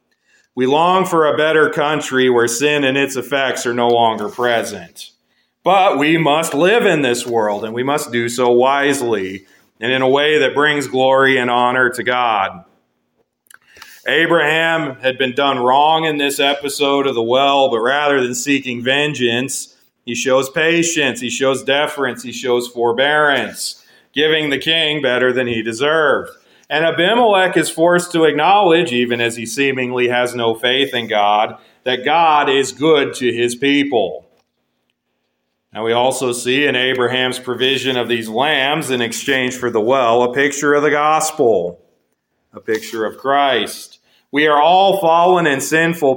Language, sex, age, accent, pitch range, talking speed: English, male, 40-59, American, 120-150 Hz, 160 wpm